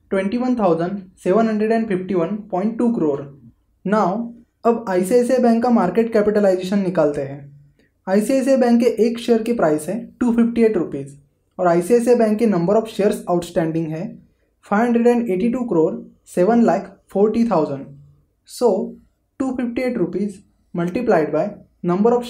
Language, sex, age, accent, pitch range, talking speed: Hindi, male, 20-39, native, 175-235 Hz, 135 wpm